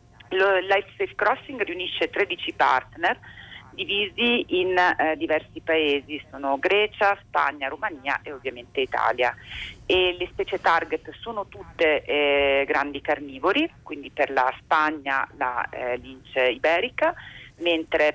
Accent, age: native, 40-59